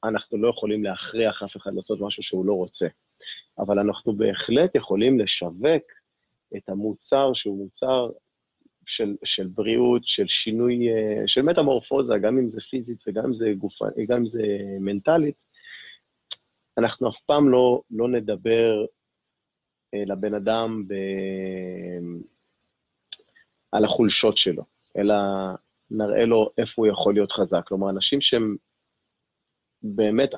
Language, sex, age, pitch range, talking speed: Hebrew, male, 30-49, 100-120 Hz, 120 wpm